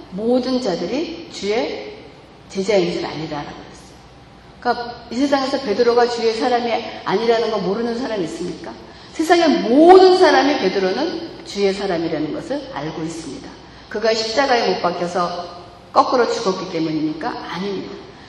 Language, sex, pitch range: Korean, female, 185-275 Hz